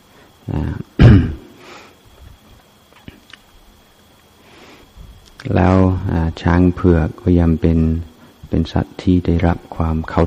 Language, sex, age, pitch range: Thai, male, 30-49, 80-90 Hz